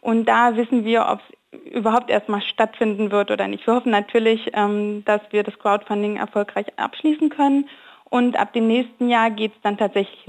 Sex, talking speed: female, 180 wpm